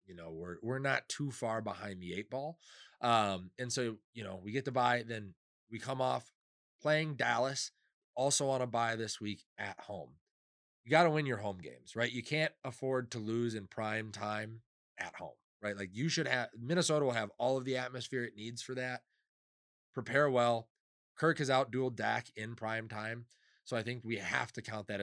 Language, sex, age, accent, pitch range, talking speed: English, male, 30-49, American, 105-130 Hz, 205 wpm